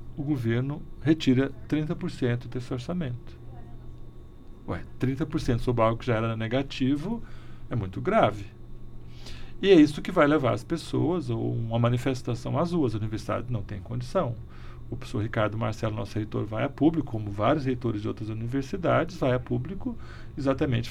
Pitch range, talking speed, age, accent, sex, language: 115-155 Hz, 155 wpm, 40-59, Brazilian, male, Portuguese